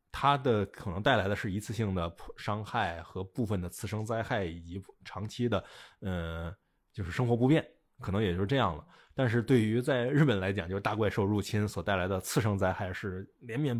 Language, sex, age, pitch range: Chinese, male, 20-39, 95-130 Hz